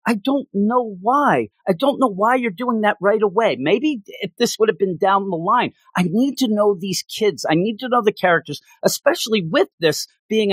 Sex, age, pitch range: male, 40-59, 160-235 Hz